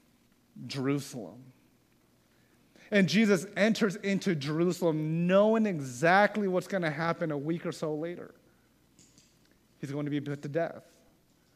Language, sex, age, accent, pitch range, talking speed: English, male, 30-49, American, 145-175 Hz, 125 wpm